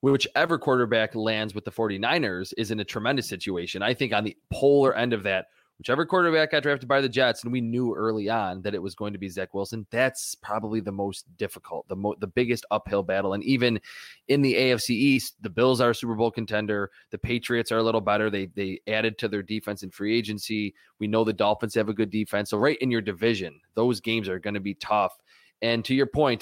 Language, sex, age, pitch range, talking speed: English, male, 20-39, 105-135 Hz, 230 wpm